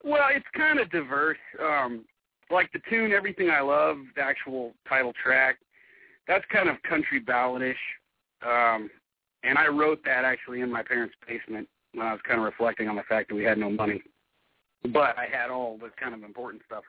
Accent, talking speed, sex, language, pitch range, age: American, 190 wpm, male, English, 110-145 Hz, 40-59